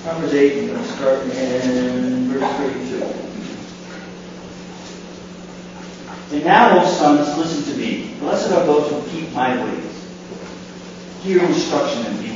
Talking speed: 130 wpm